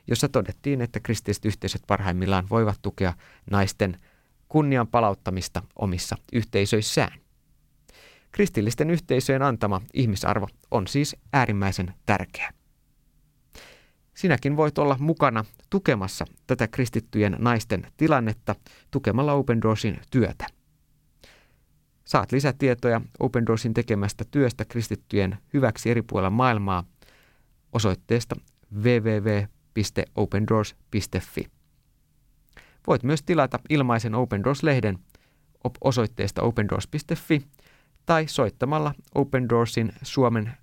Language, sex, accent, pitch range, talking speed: Finnish, male, native, 105-135 Hz, 90 wpm